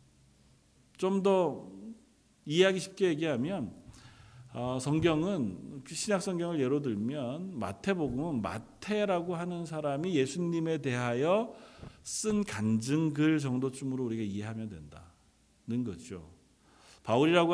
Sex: male